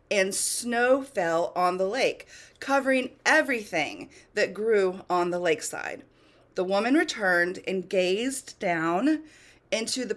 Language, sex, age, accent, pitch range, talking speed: English, female, 30-49, American, 180-275 Hz, 125 wpm